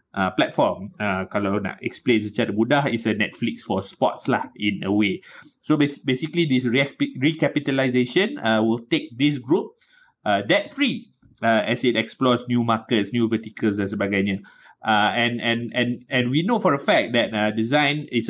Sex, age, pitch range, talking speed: male, 20-39, 110-125 Hz, 180 wpm